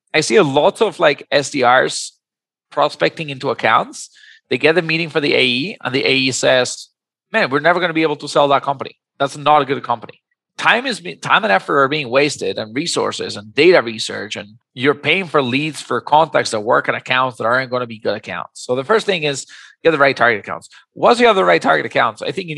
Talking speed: 235 wpm